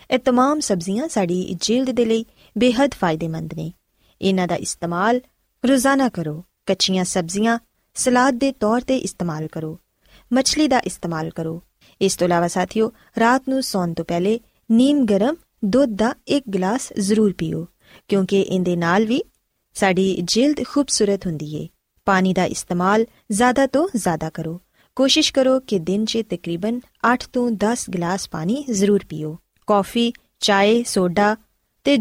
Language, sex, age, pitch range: Punjabi, female, 20-39, 180-250 Hz